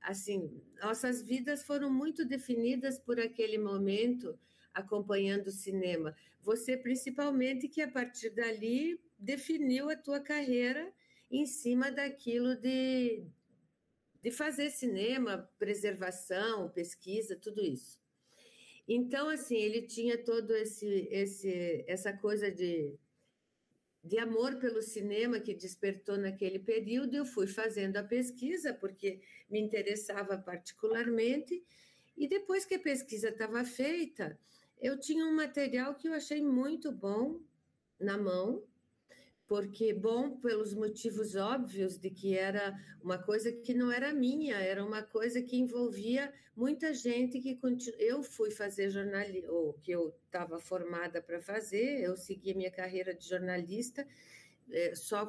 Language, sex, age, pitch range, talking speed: Portuguese, female, 50-69, 195-255 Hz, 130 wpm